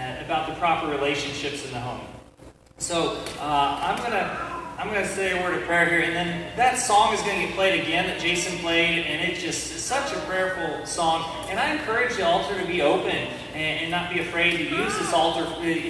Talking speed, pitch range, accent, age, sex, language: 215 wpm, 150-175 Hz, American, 30-49, male, English